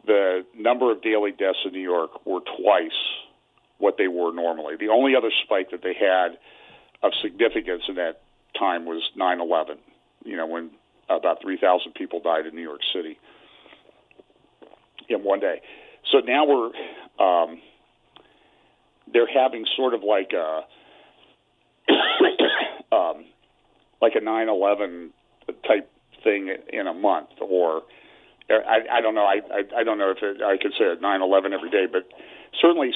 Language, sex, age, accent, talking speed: English, male, 50-69, American, 155 wpm